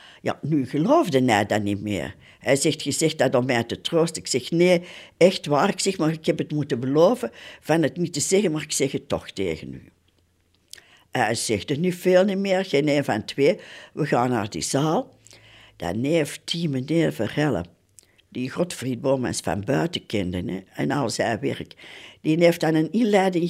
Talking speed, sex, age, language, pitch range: 195 wpm, female, 60-79, Dutch, 125-180 Hz